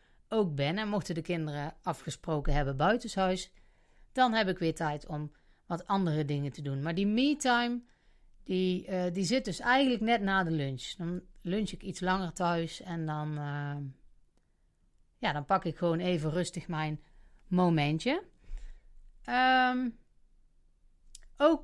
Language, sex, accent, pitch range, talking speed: Dutch, female, Dutch, 165-215 Hz, 145 wpm